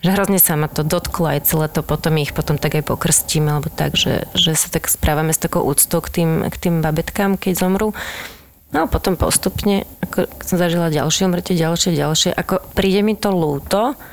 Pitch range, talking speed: 160-180 Hz, 205 wpm